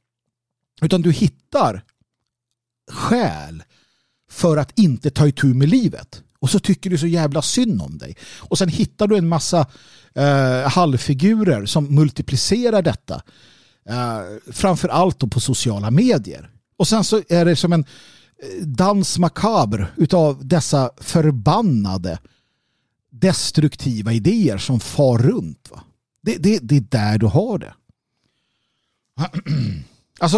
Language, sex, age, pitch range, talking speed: Swedish, male, 50-69, 120-175 Hz, 130 wpm